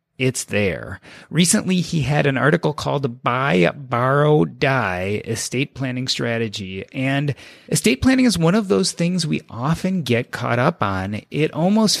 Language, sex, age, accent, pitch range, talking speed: English, male, 30-49, American, 125-170 Hz, 155 wpm